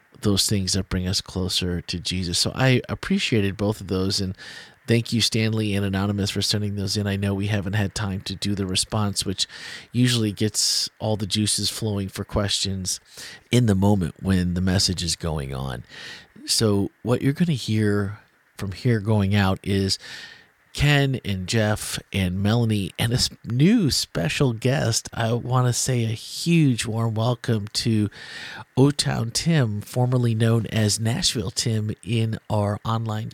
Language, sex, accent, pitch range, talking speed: English, male, American, 100-115 Hz, 165 wpm